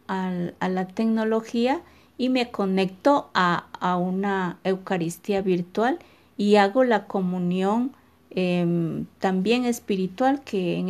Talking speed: 115 wpm